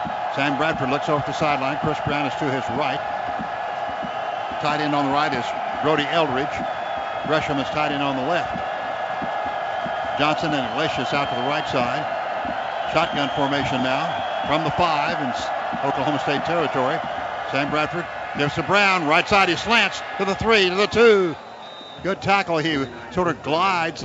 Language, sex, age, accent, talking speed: English, male, 60-79, American, 165 wpm